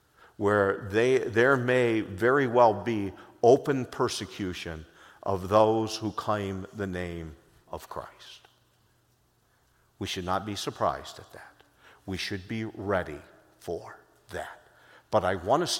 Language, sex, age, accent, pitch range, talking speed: English, male, 50-69, American, 105-140 Hz, 130 wpm